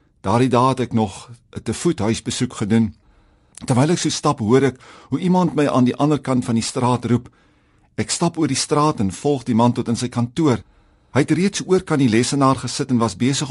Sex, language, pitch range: male, English, 115-150 Hz